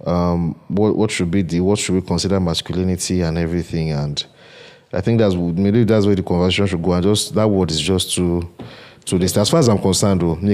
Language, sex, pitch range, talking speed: English, male, 85-105 Hz, 220 wpm